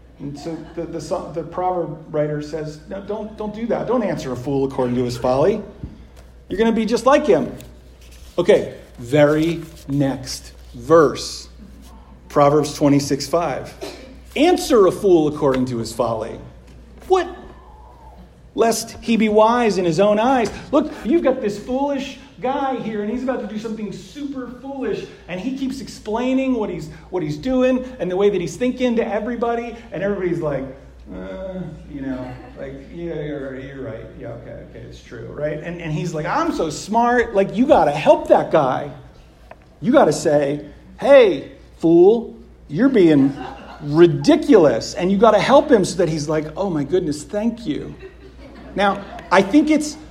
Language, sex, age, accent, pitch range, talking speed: English, male, 40-59, American, 145-235 Hz, 170 wpm